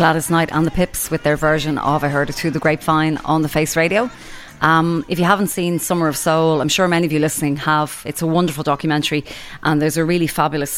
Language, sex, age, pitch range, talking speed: English, female, 20-39, 140-160 Hz, 240 wpm